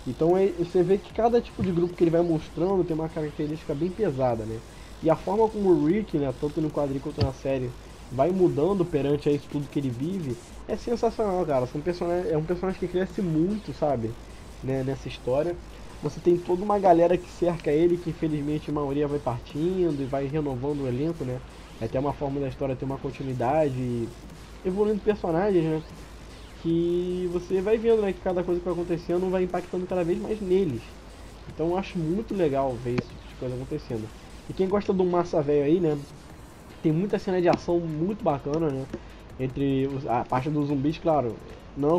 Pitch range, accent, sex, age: 135-175 Hz, Brazilian, male, 20-39